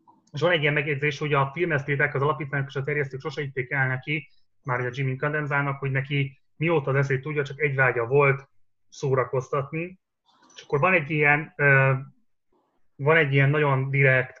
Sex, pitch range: male, 130-150 Hz